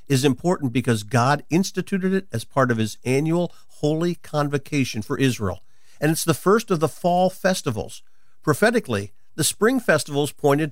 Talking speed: 155 wpm